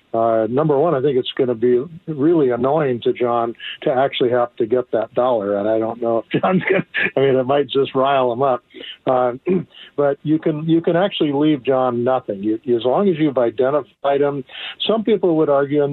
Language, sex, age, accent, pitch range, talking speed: English, male, 50-69, American, 125-155 Hz, 220 wpm